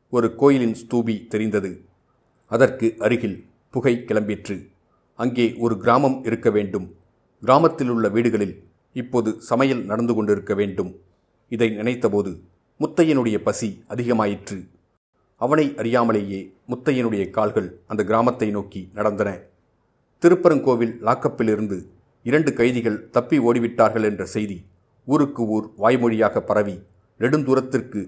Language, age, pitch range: Tamil, 40-59, 105-125 Hz